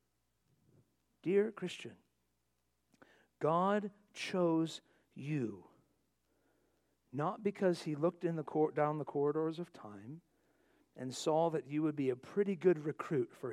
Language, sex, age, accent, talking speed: English, male, 50-69, American, 125 wpm